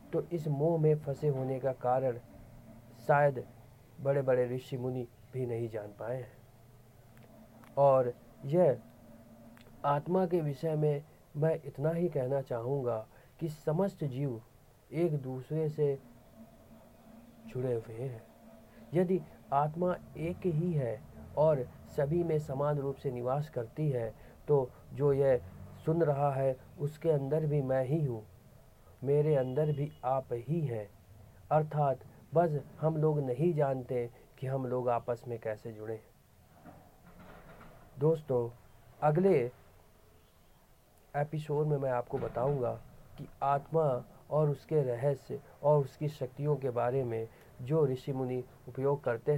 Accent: native